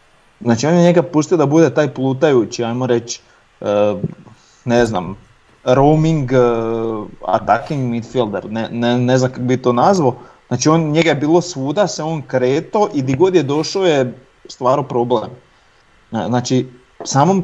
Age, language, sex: 30-49, Croatian, male